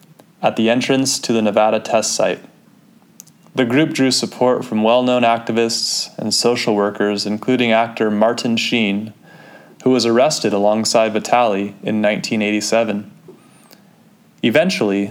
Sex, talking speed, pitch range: male, 120 wpm, 105-130 Hz